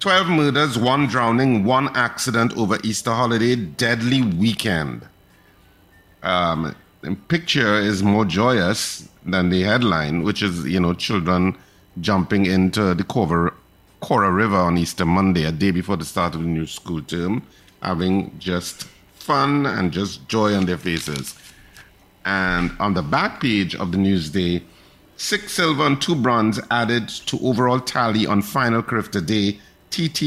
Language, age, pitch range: English, 50-69, 90-120 Hz